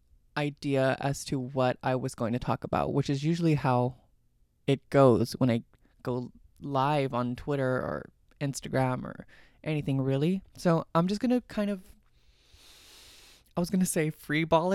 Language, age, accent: English, 20-39, American